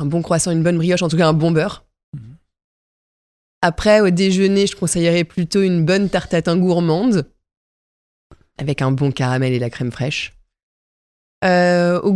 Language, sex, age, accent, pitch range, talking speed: French, female, 20-39, French, 140-175 Hz, 170 wpm